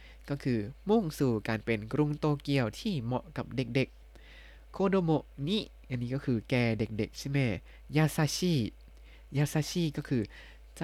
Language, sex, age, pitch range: Thai, male, 20-39, 110-145 Hz